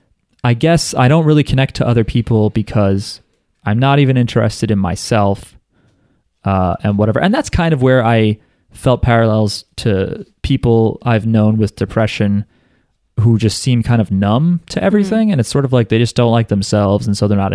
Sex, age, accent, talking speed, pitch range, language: male, 20-39, American, 190 wpm, 105-140 Hz, English